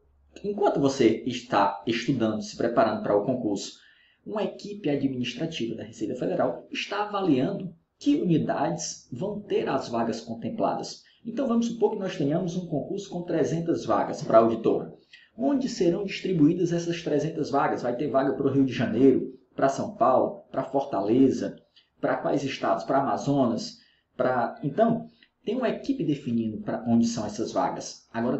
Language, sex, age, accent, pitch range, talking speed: Portuguese, male, 20-39, Brazilian, 120-190 Hz, 155 wpm